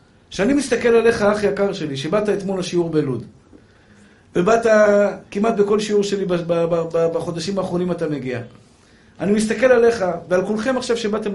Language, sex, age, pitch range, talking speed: Hebrew, male, 50-69, 170-250 Hz, 135 wpm